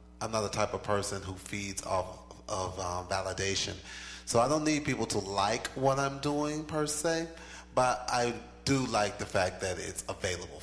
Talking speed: 185 wpm